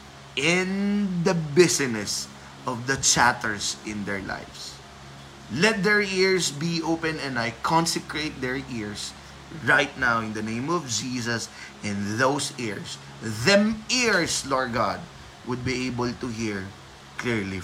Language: Filipino